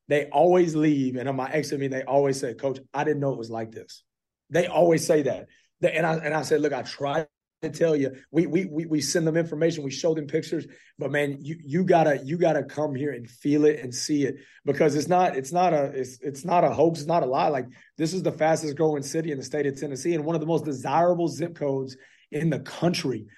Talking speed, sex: 255 wpm, male